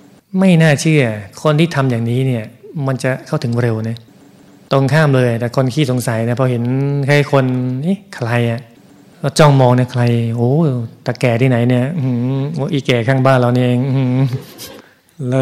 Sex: male